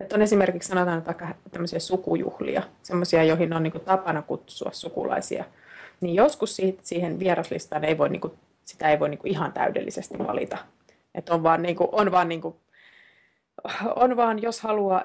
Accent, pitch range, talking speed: native, 175-220 Hz, 170 wpm